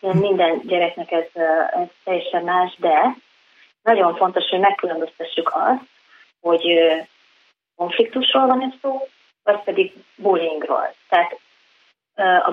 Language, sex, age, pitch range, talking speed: Hungarian, female, 30-49, 175-235 Hz, 100 wpm